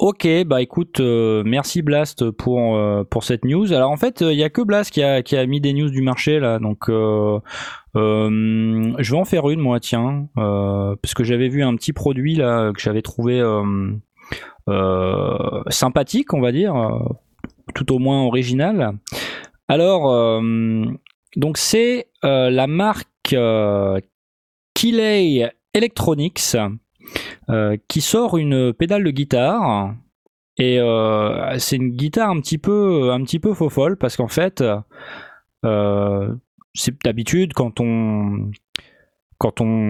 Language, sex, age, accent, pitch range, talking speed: French, male, 20-39, French, 110-140 Hz, 150 wpm